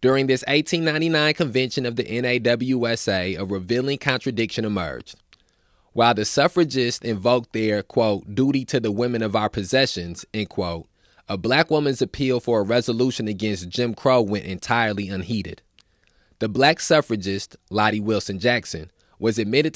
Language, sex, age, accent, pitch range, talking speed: English, male, 20-39, American, 100-130 Hz, 145 wpm